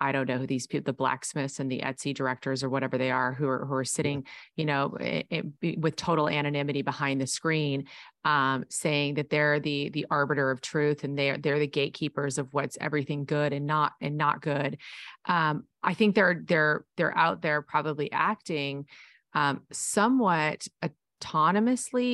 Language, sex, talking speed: English, female, 175 wpm